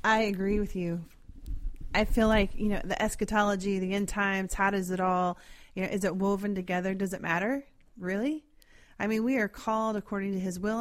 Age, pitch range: 30-49, 185-220 Hz